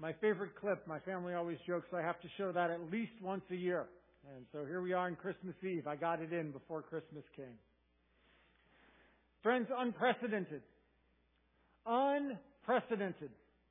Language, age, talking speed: English, 50-69, 160 wpm